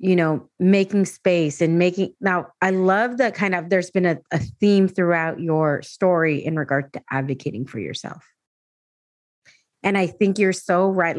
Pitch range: 175-220 Hz